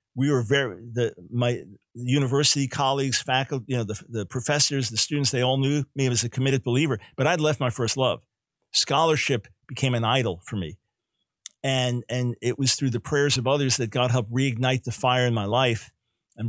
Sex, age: male, 50-69